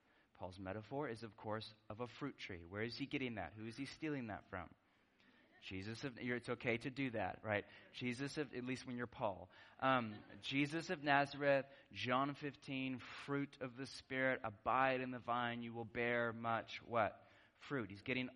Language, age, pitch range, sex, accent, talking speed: English, 20-39, 125-185 Hz, male, American, 185 wpm